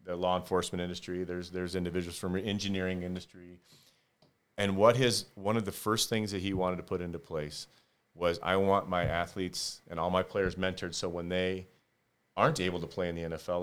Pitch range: 85-95 Hz